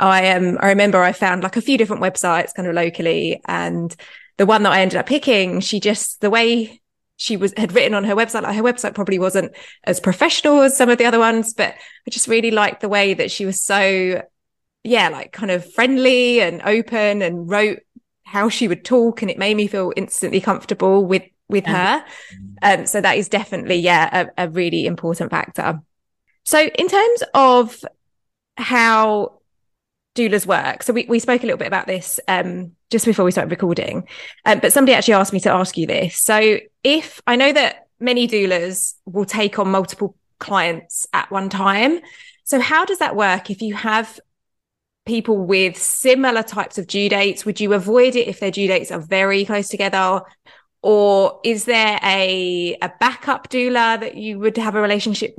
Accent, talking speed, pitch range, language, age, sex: British, 195 wpm, 190-230 Hz, English, 20-39, female